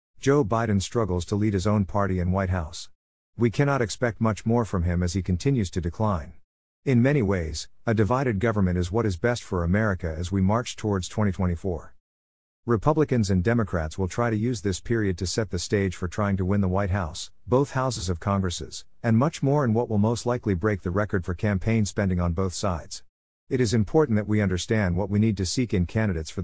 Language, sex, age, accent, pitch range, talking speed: English, male, 50-69, American, 90-115 Hz, 215 wpm